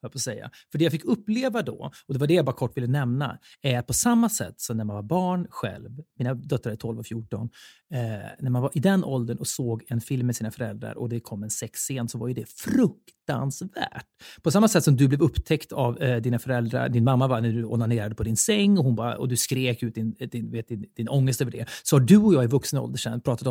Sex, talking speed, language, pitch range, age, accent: male, 260 wpm, Swedish, 120-160 Hz, 30-49, native